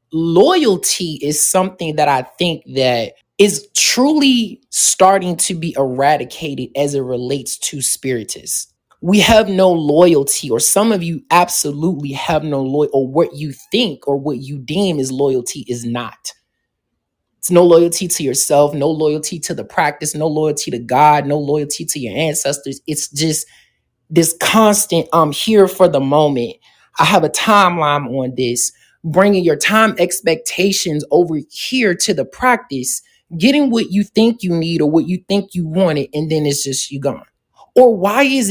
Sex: male